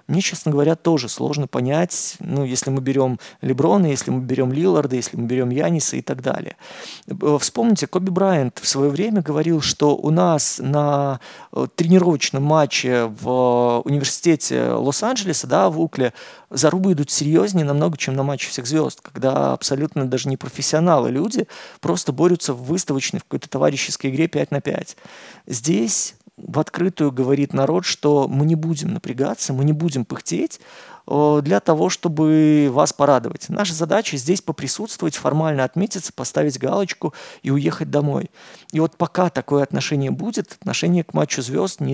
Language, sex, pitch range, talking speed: Russian, male, 135-170 Hz, 155 wpm